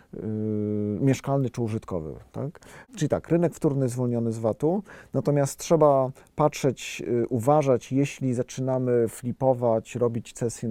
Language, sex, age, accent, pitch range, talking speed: Polish, male, 40-59, native, 110-135 Hz, 130 wpm